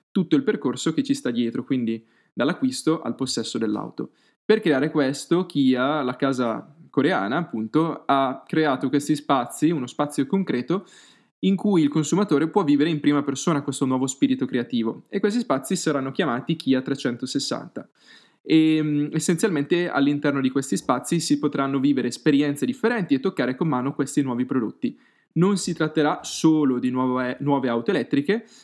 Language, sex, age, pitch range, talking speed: Italian, male, 20-39, 135-165 Hz, 155 wpm